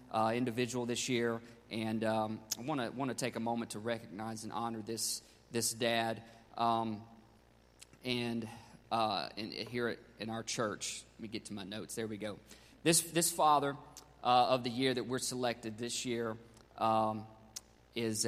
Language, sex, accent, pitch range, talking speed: English, male, American, 110-135 Hz, 165 wpm